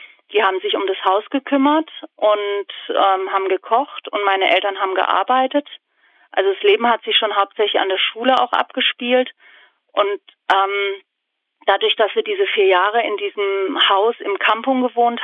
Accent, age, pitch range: German, 40-59, 200-255 Hz